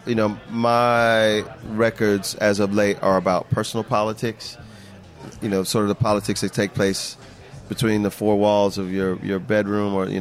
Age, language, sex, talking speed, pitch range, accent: 30-49, English, male, 175 wpm, 100-120 Hz, American